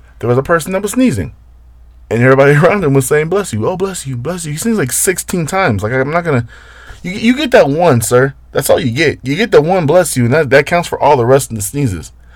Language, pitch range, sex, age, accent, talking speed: English, 115-180 Hz, male, 20-39, American, 270 wpm